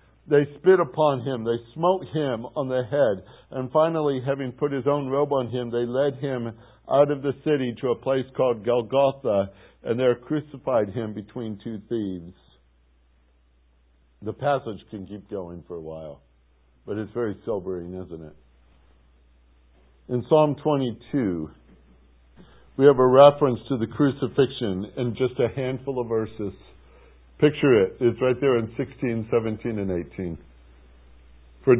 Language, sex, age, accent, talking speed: English, male, 60-79, American, 150 wpm